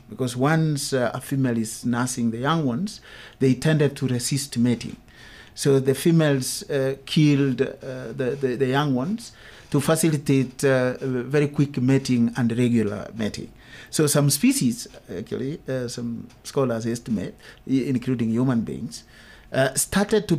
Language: English